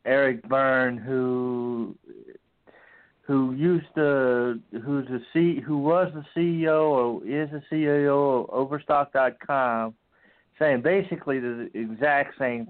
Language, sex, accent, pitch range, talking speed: English, male, American, 125-170 Hz, 120 wpm